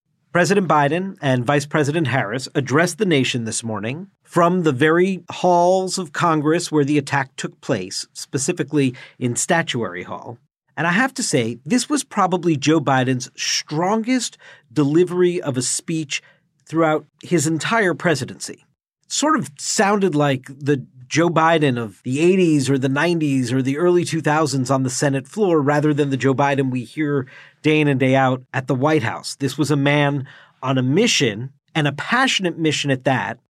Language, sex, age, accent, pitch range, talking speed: English, male, 50-69, American, 140-180 Hz, 170 wpm